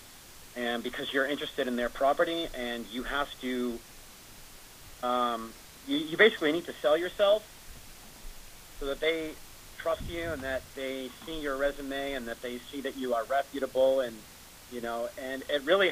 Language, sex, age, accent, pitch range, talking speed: English, male, 40-59, American, 120-150 Hz, 165 wpm